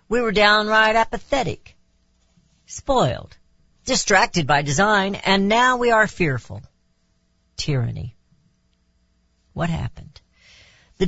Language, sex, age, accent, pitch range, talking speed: English, female, 50-69, American, 120-195 Hz, 90 wpm